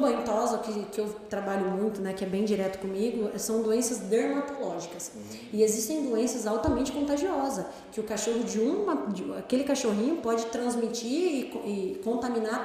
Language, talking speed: Portuguese, 155 wpm